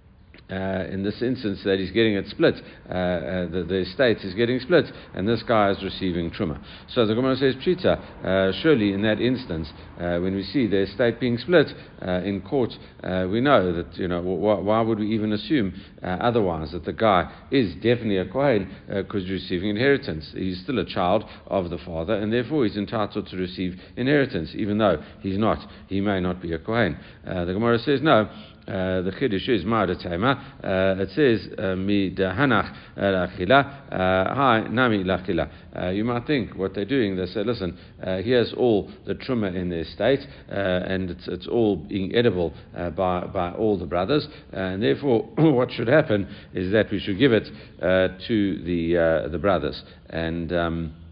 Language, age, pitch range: English, 60-79, 90-110 Hz